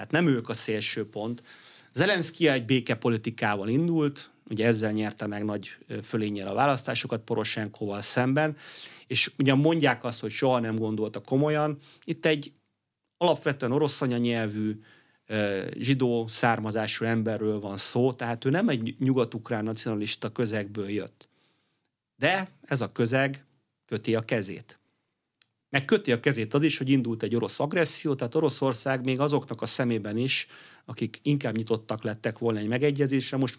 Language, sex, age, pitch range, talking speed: Hungarian, male, 30-49, 110-145 Hz, 145 wpm